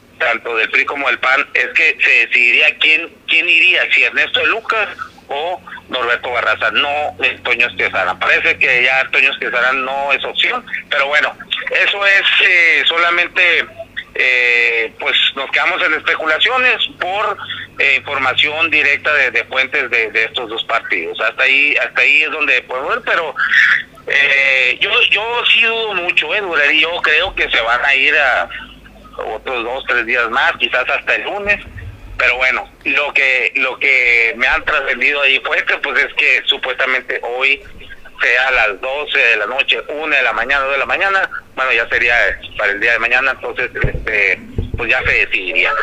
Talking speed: 175 wpm